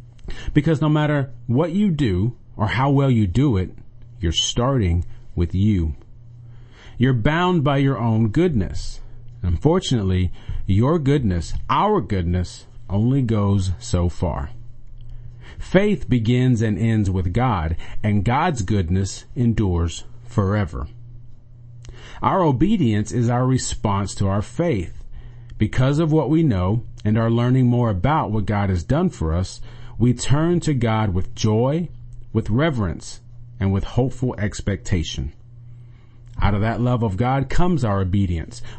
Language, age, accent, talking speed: English, 40-59, American, 135 wpm